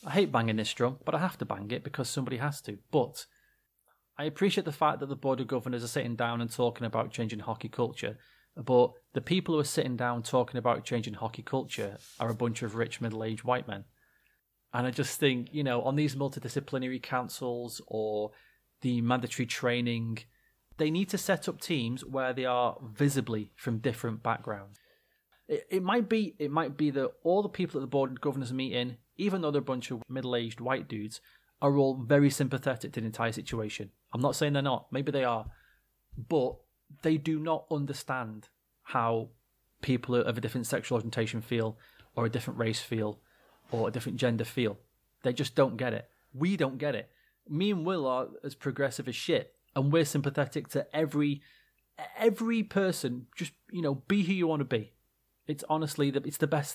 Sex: male